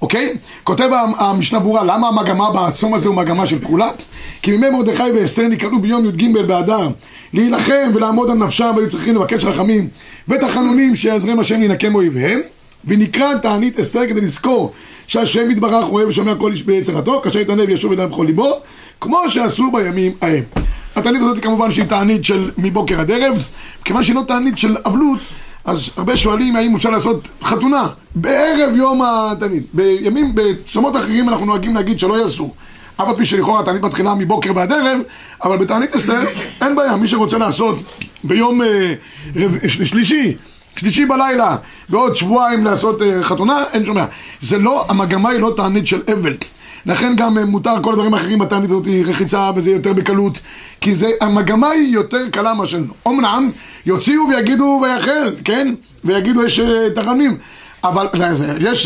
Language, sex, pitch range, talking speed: Hebrew, male, 200-245 Hz, 160 wpm